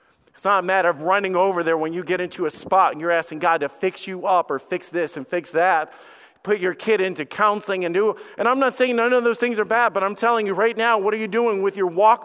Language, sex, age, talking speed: English, male, 40-59, 290 wpm